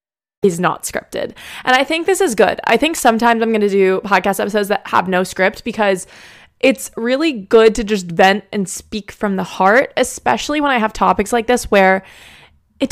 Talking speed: 200 wpm